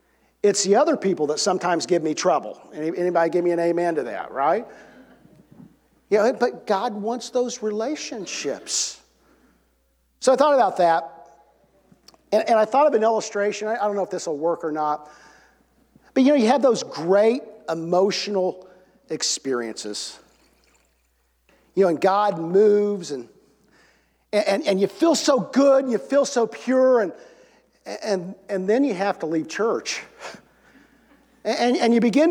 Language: English